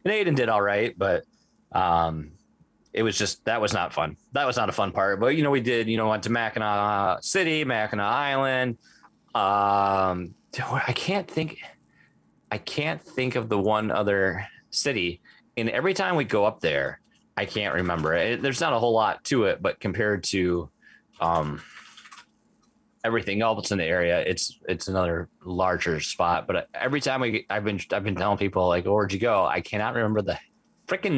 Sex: male